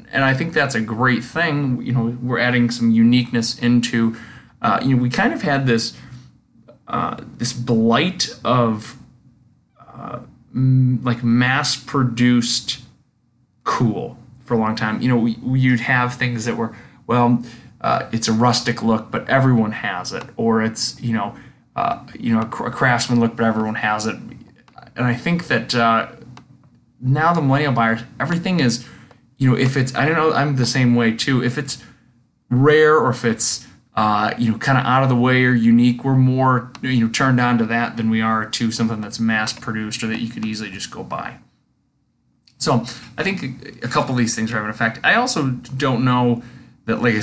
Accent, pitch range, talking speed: American, 115-130 Hz, 185 wpm